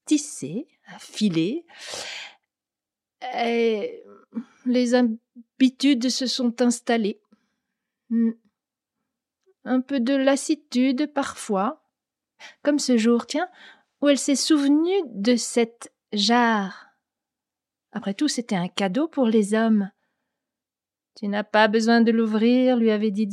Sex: female